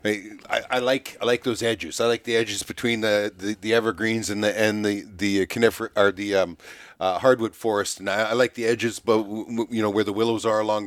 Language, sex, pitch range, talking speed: English, male, 105-130 Hz, 245 wpm